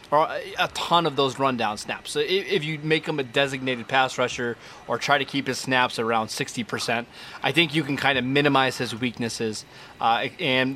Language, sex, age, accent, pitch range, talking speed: English, male, 20-39, American, 125-155 Hz, 195 wpm